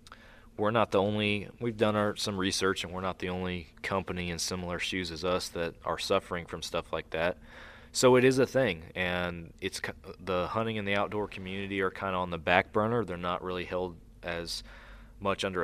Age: 20-39